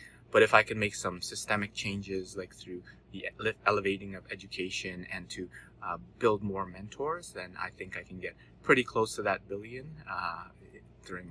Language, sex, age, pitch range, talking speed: English, male, 20-39, 90-110 Hz, 175 wpm